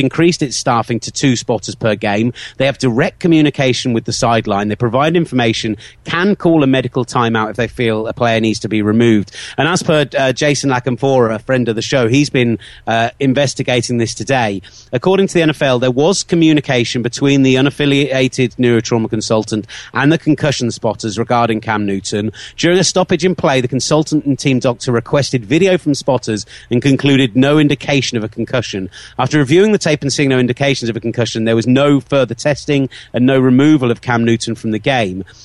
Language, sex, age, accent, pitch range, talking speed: English, male, 30-49, British, 115-140 Hz, 190 wpm